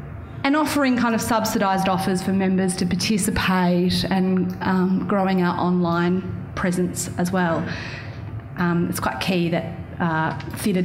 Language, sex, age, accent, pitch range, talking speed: English, female, 30-49, Australian, 170-230 Hz, 140 wpm